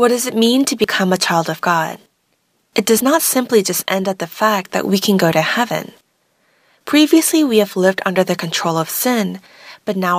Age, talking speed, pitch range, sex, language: 20-39, 210 wpm, 175-220 Hz, female, English